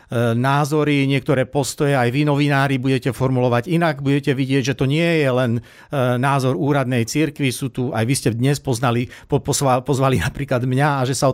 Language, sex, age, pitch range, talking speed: Slovak, male, 60-79, 130-150 Hz, 175 wpm